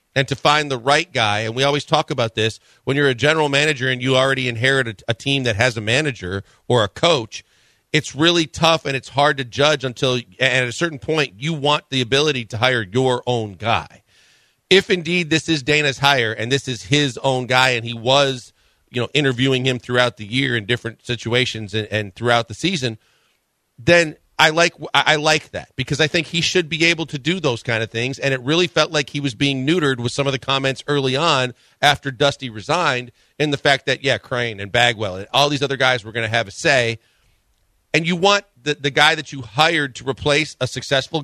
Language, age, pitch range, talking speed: English, 40-59, 125-155 Hz, 225 wpm